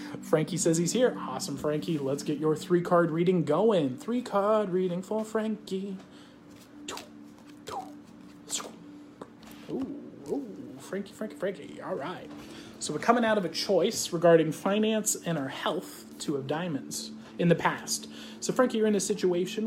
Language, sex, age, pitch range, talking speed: English, male, 30-49, 135-185 Hz, 145 wpm